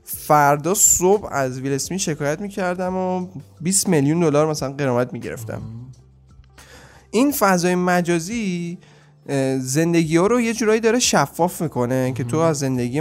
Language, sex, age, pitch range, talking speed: Persian, male, 10-29, 130-175 Hz, 135 wpm